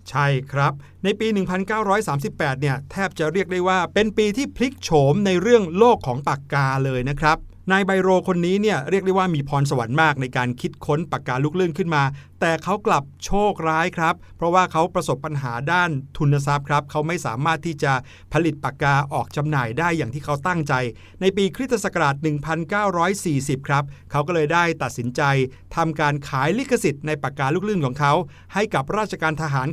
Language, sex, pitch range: Thai, male, 140-195 Hz